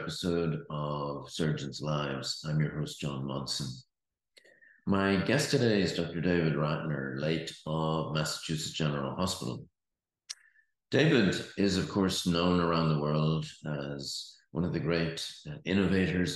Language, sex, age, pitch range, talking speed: English, male, 50-69, 75-90 Hz, 130 wpm